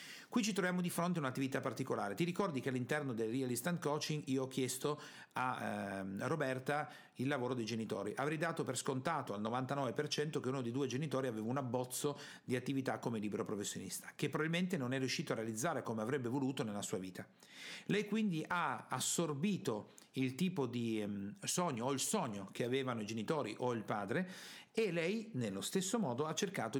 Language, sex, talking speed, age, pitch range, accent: Italian, male, 190 wpm, 50-69, 115-160 Hz, native